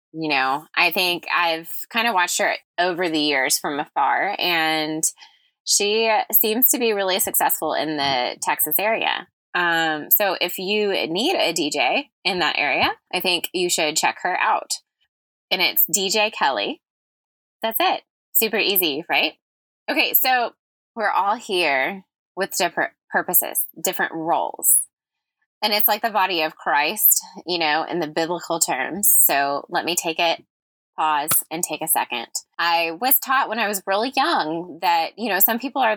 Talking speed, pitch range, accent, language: 165 wpm, 170-235 Hz, American, English